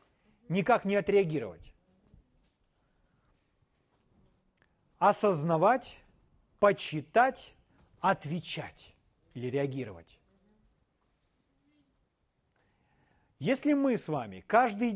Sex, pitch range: male, 160-225 Hz